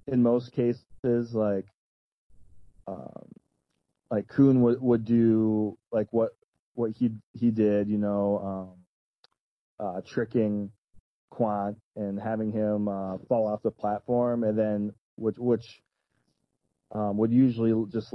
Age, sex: 20-39, male